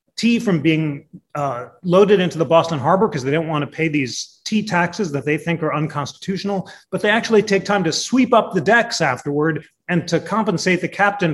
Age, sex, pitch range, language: 30-49, male, 145-190 Hz, English